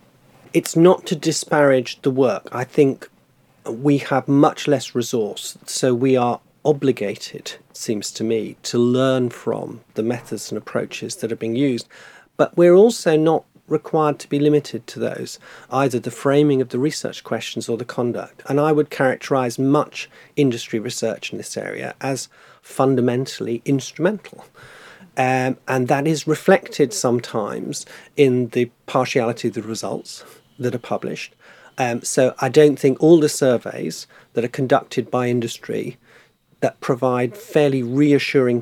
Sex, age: male, 40-59